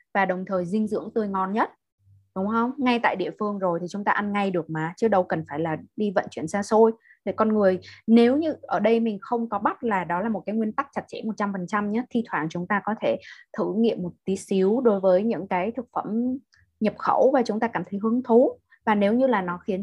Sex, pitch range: female, 180-225 Hz